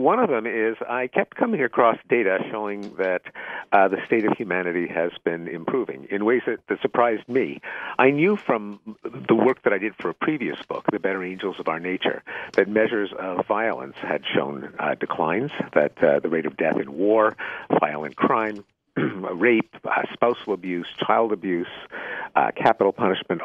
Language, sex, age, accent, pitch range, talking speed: English, male, 50-69, American, 100-130 Hz, 180 wpm